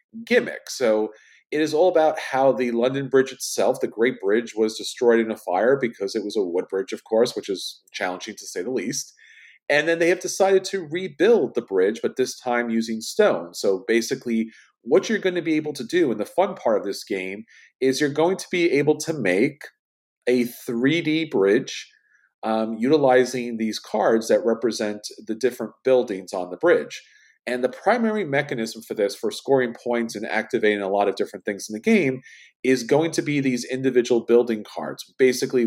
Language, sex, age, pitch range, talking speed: English, male, 40-59, 110-165 Hz, 195 wpm